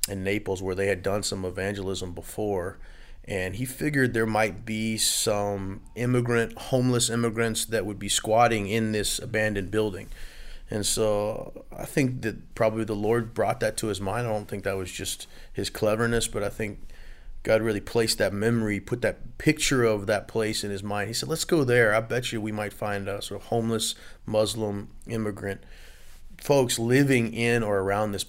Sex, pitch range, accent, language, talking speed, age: male, 100-115 Hz, American, English, 185 wpm, 30-49